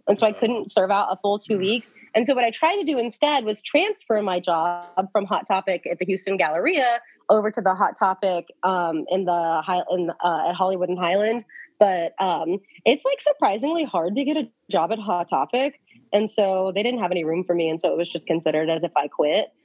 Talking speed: 235 wpm